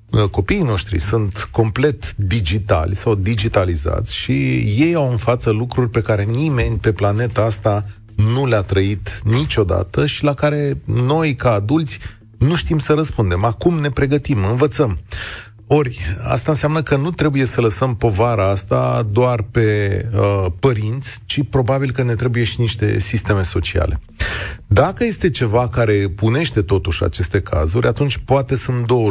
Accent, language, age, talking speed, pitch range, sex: native, Romanian, 30-49, 150 wpm, 100-130 Hz, male